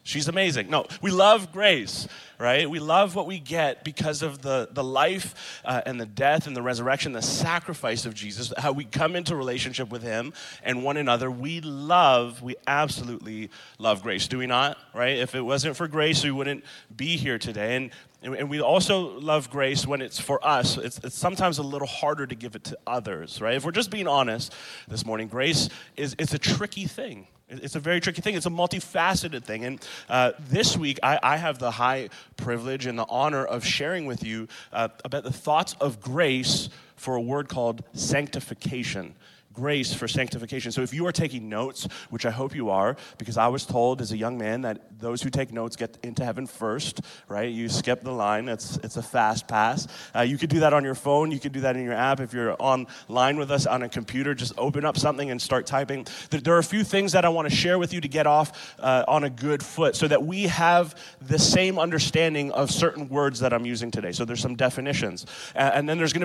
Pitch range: 125-155 Hz